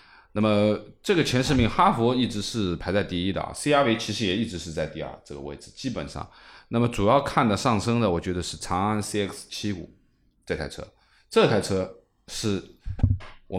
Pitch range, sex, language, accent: 85-110 Hz, male, Chinese, native